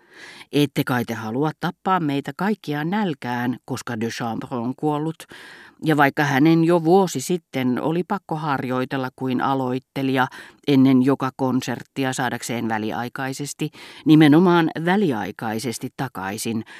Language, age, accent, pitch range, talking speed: Finnish, 40-59, native, 120-160 Hz, 110 wpm